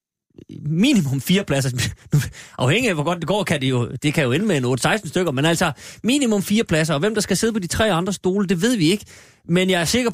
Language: Danish